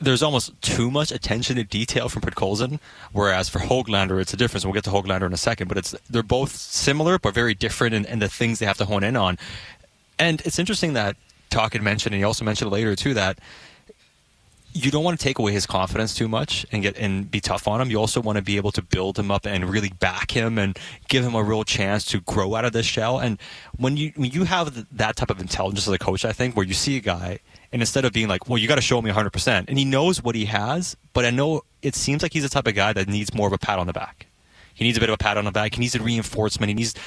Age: 20-39